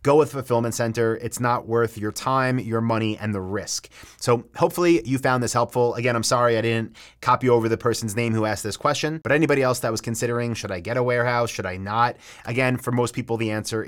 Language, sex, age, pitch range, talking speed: English, male, 30-49, 110-130 Hz, 235 wpm